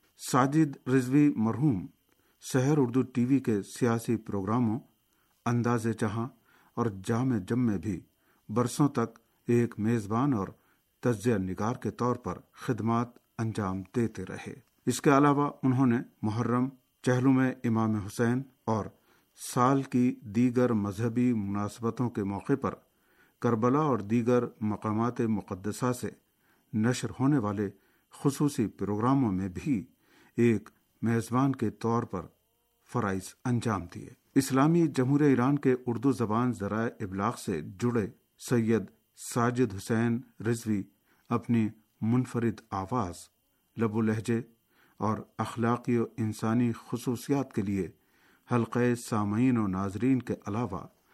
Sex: male